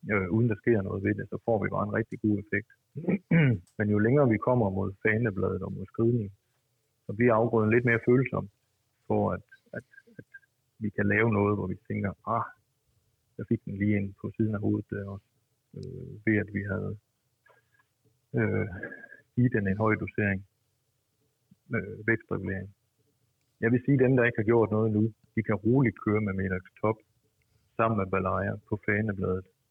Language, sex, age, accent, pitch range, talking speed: Danish, male, 50-69, native, 100-120 Hz, 180 wpm